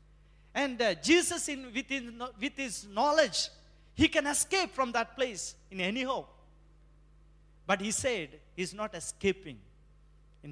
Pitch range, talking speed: 140-220 Hz, 135 wpm